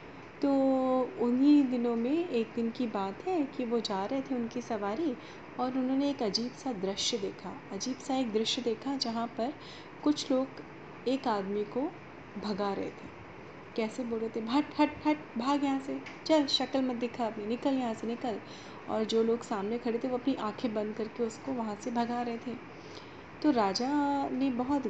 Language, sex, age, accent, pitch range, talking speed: Hindi, female, 30-49, native, 215-260 Hz, 190 wpm